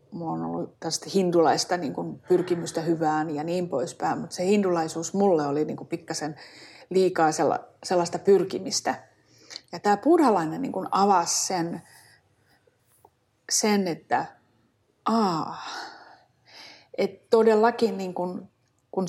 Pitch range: 165-215 Hz